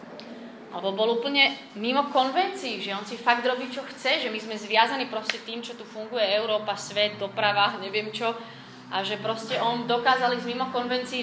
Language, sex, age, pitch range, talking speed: Slovak, female, 30-49, 190-225 Hz, 175 wpm